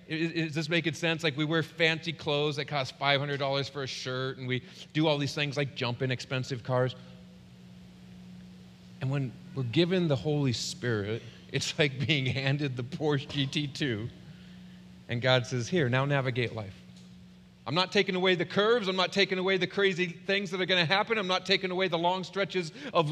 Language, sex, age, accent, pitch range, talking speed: English, male, 40-59, American, 135-195 Hz, 190 wpm